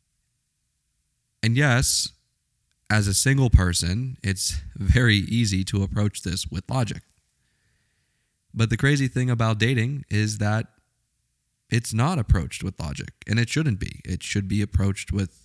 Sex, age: male, 20-39